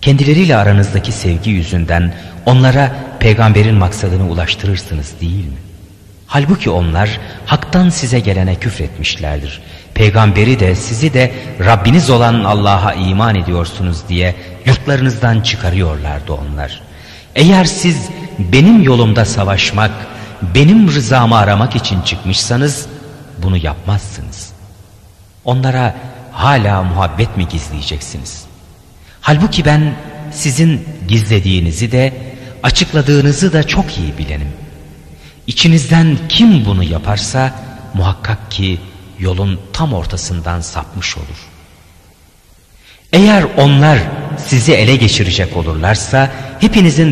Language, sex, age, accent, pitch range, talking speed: Turkish, male, 40-59, native, 90-130 Hz, 95 wpm